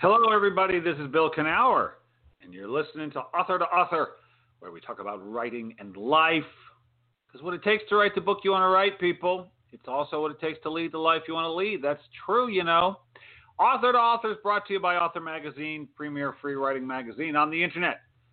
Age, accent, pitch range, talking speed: 40-59, American, 120-170 Hz, 220 wpm